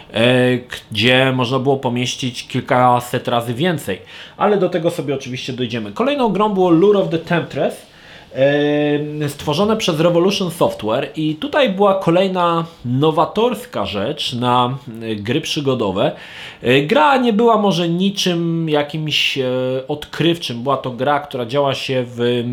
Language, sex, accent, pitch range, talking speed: Polish, male, native, 130-175 Hz, 125 wpm